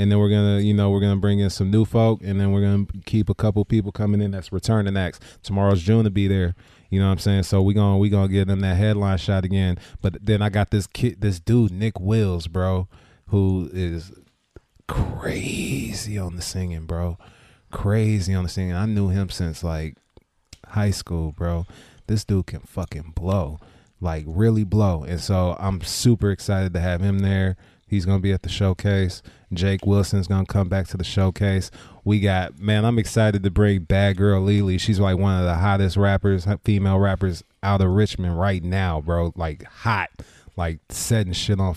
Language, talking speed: English, 200 wpm